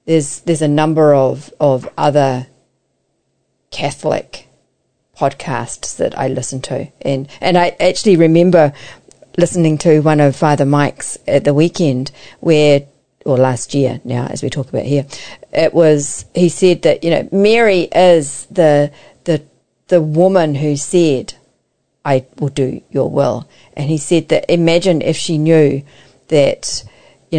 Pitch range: 140-170 Hz